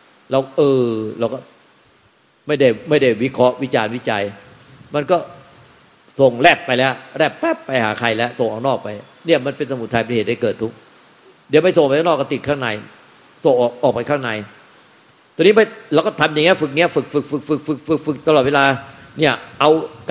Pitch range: 130-160 Hz